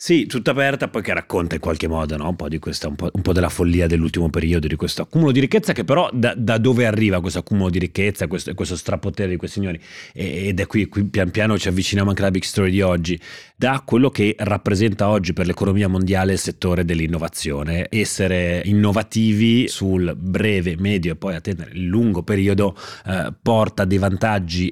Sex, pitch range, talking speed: male, 90-110 Hz, 200 wpm